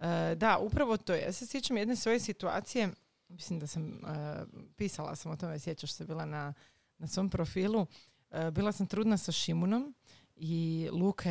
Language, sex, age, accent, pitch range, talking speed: Croatian, female, 30-49, native, 160-210 Hz, 180 wpm